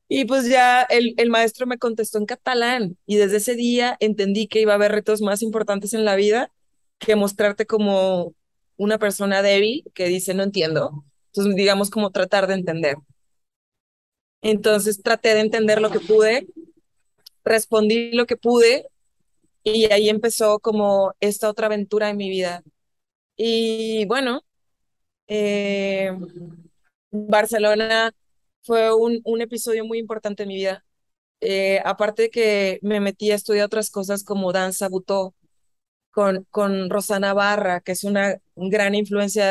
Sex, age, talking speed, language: female, 20-39, 145 wpm, English